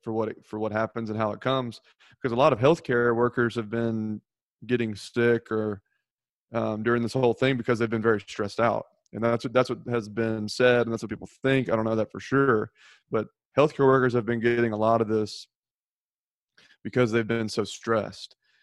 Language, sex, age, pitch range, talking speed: English, male, 30-49, 110-125 Hz, 215 wpm